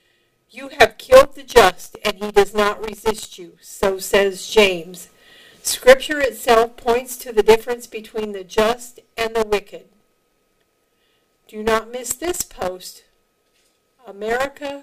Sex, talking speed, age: female, 130 wpm, 50-69